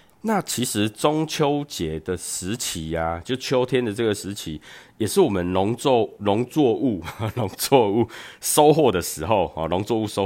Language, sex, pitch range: Chinese, male, 95-125 Hz